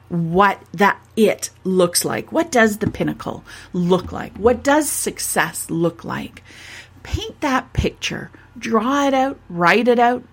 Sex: female